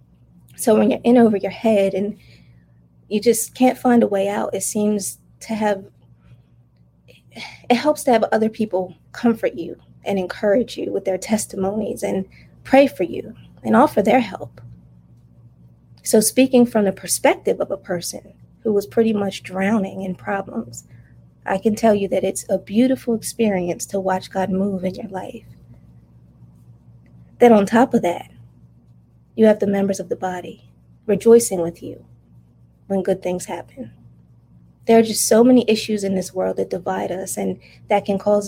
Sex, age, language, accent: female, 20-39, English, American